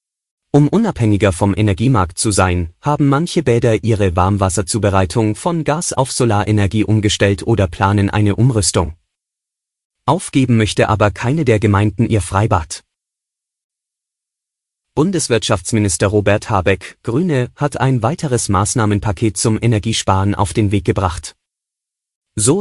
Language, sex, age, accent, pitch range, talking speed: German, male, 30-49, German, 100-120 Hz, 115 wpm